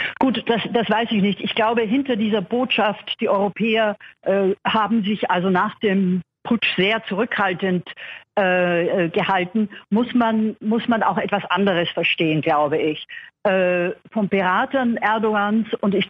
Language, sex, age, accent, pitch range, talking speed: German, female, 50-69, German, 185-230 Hz, 145 wpm